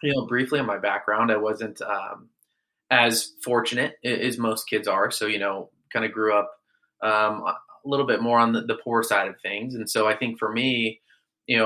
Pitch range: 105-120 Hz